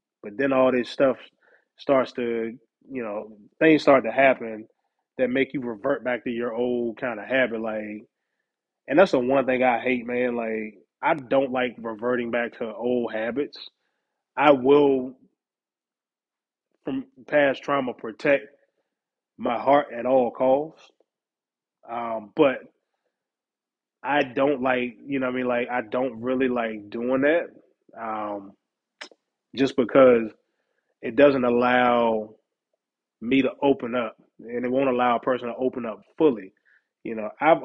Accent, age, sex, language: American, 20-39, male, English